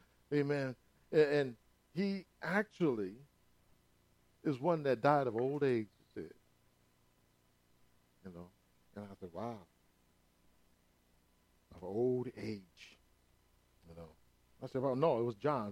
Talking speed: 120 wpm